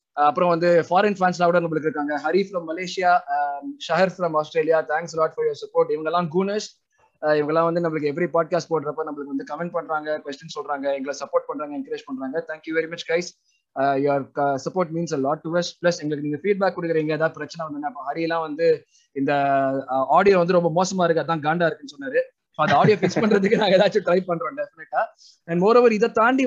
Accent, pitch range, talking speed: native, 150-185 Hz, 120 wpm